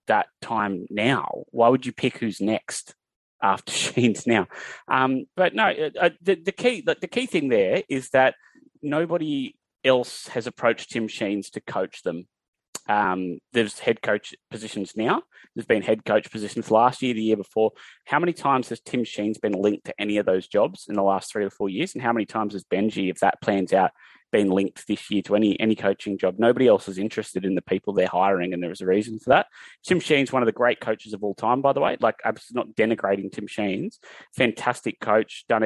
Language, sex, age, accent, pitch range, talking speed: English, male, 20-39, Australian, 105-140 Hz, 215 wpm